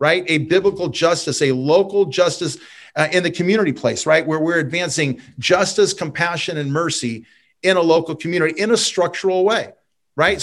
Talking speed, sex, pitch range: 165 wpm, male, 150-185 Hz